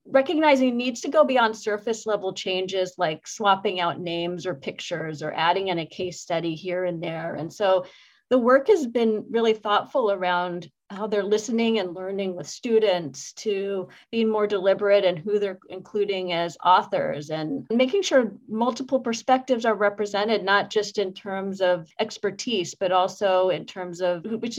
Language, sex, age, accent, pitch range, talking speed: English, female, 40-59, American, 175-220 Hz, 165 wpm